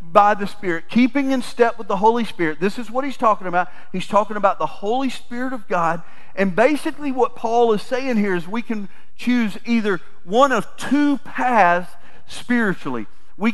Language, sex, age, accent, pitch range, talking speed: English, male, 40-59, American, 180-235 Hz, 185 wpm